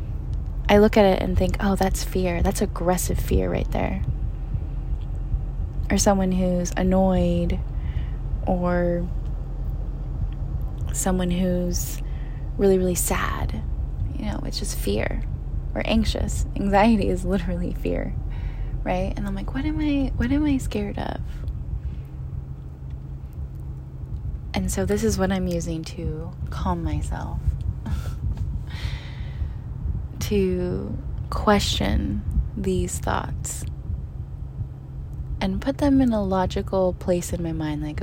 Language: English